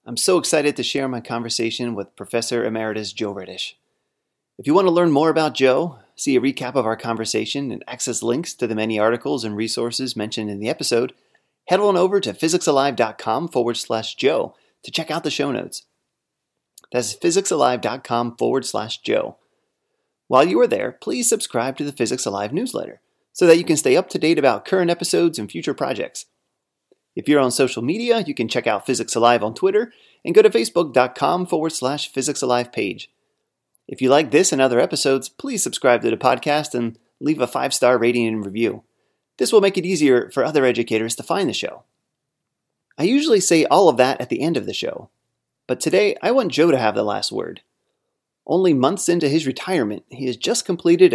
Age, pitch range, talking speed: 30-49, 120-175 Hz, 195 wpm